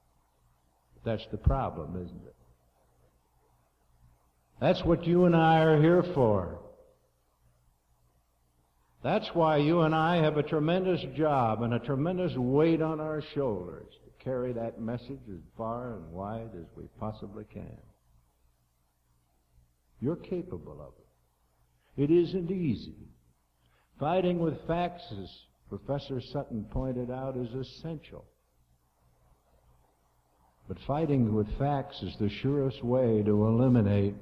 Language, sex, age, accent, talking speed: English, male, 60-79, American, 120 wpm